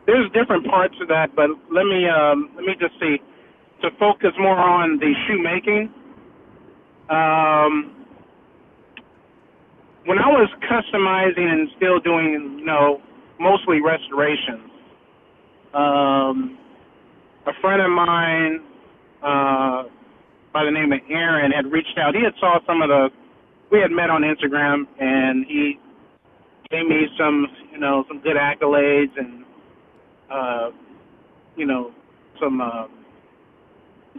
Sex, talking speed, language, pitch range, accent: male, 130 wpm, English, 145-185 Hz, American